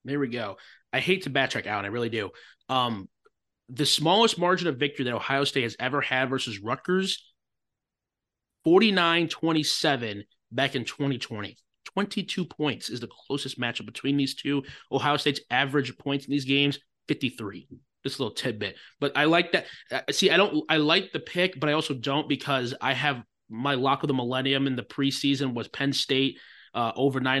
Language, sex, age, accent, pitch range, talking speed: English, male, 20-39, American, 130-150 Hz, 180 wpm